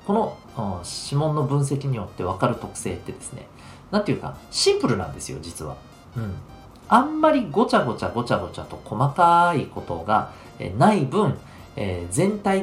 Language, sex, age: Japanese, male, 40-59